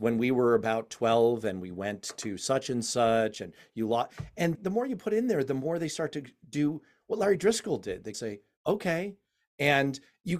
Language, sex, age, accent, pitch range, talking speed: English, male, 40-59, American, 110-170 Hz, 215 wpm